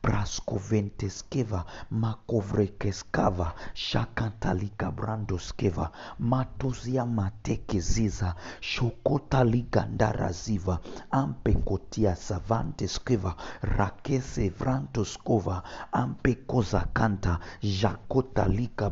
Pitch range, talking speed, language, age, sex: 95-120 Hz, 40 wpm, English, 50-69, male